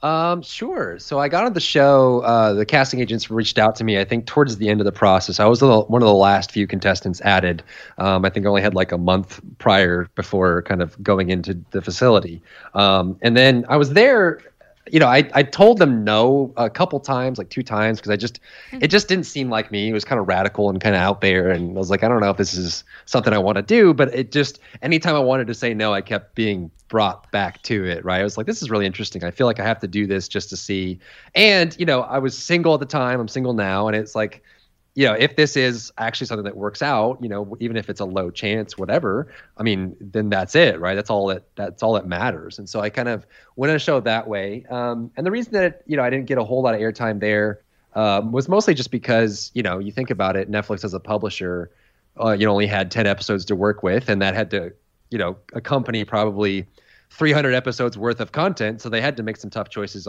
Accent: American